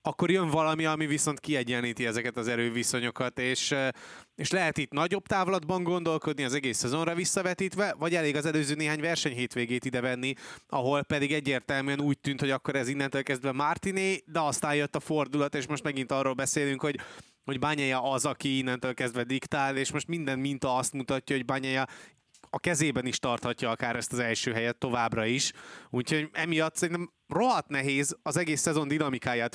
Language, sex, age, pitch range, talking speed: Hungarian, male, 20-39, 125-155 Hz, 175 wpm